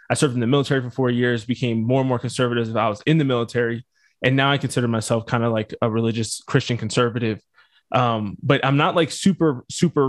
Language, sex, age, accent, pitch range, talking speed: English, male, 20-39, American, 120-150 Hz, 225 wpm